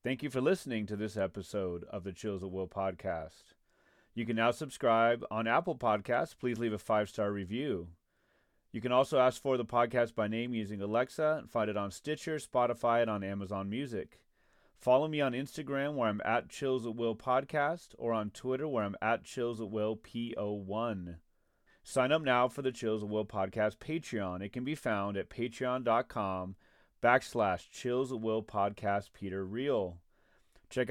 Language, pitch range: English, 105-130 Hz